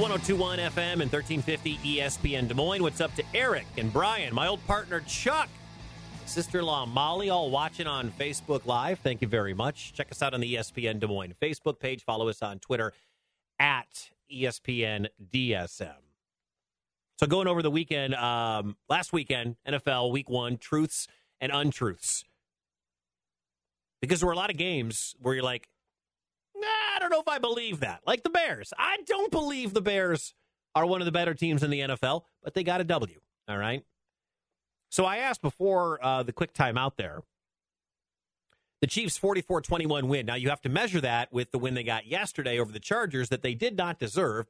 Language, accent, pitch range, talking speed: English, American, 115-170 Hz, 180 wpm